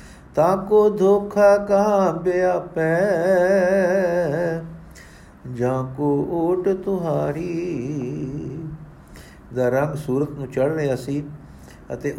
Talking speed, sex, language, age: 75 wpm, male, Punjabi, 50-69